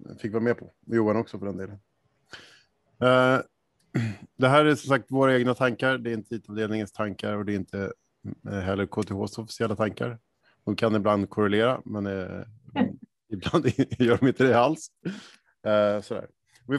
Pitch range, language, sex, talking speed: 105-130 Hz, Swedish, male, 155 wpm